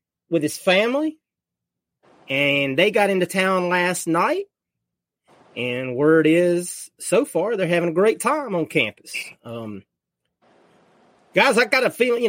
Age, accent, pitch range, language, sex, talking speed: 30-49, American, 140-180 Hz, English, male, 140 wpm